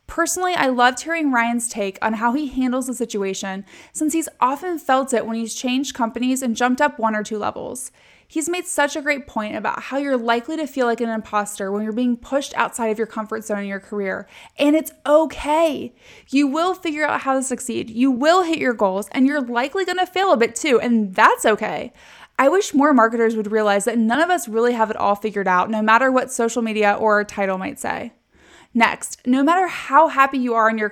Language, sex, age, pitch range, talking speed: English, female, 20-39, 220-290 Hz, 225 wpm